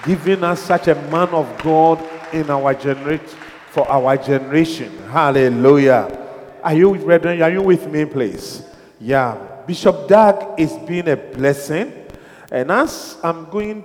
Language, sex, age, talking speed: English, male, 50-69, 145 wpm